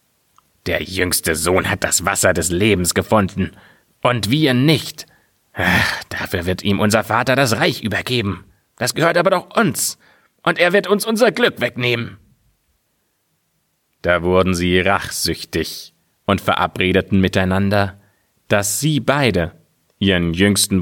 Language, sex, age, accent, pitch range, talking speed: German, male, 30-49, German, 95-125 Hz, 125 wpm